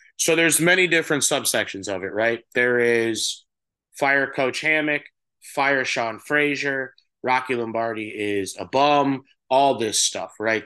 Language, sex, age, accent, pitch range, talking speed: English, male, 30-49, American, 135-180 Hz, 140 wpm